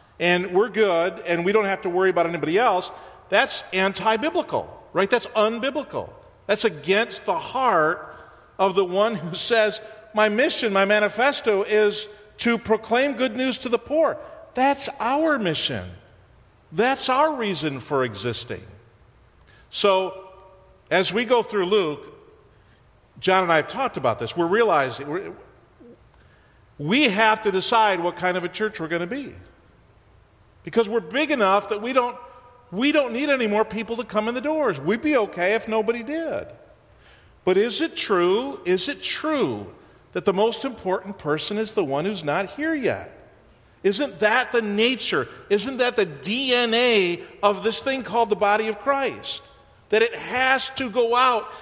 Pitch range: 195-260 Hz